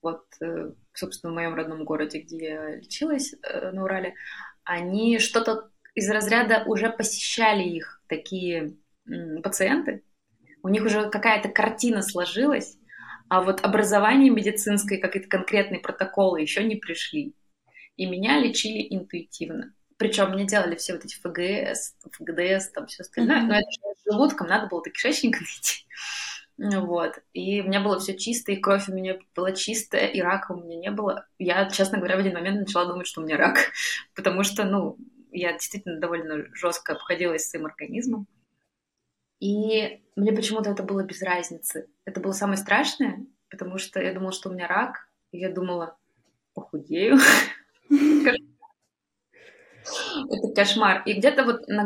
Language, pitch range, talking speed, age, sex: Russian, 180-220 Hz, 155 wpm, 20-39, female